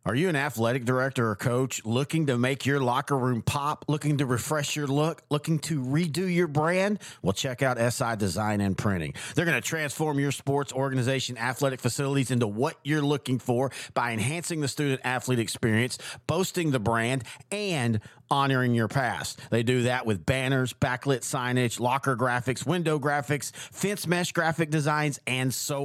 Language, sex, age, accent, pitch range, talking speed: English, male, 40-59, American, 125-155 Hz, 170 wpm